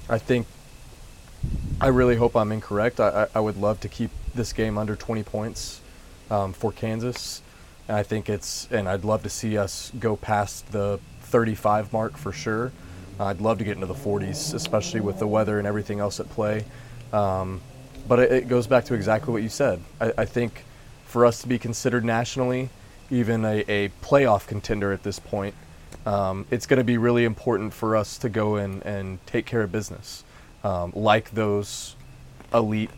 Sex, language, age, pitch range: male, English, 20-39, 100-120 Hz